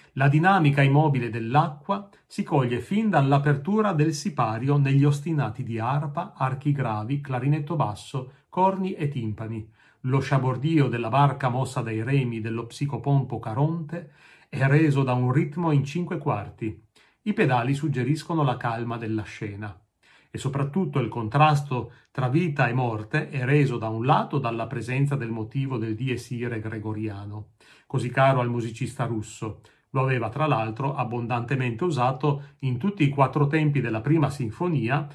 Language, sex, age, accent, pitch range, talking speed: Italian, male, 40-59, native, 115-150 Hz, 145 wpm